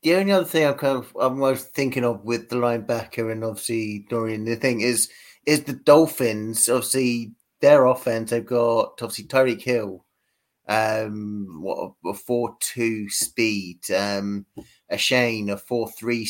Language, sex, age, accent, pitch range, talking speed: English, male, 30-49, British, 105-120 Hz, 150 wpm